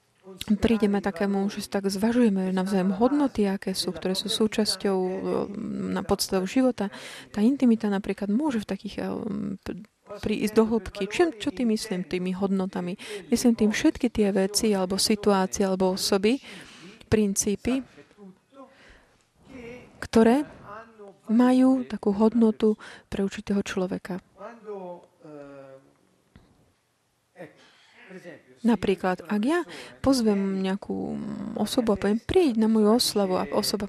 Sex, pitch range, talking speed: female, 190-230 Hz, 110 wpm